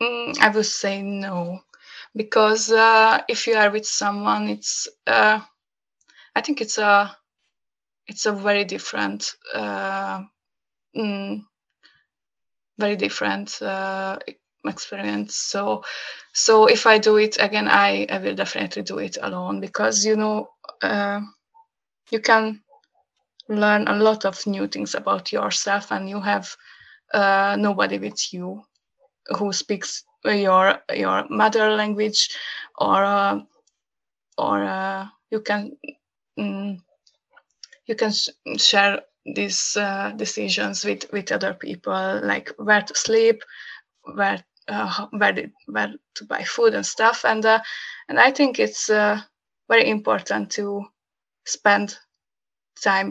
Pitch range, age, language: 195-225 Hz, 20-39, English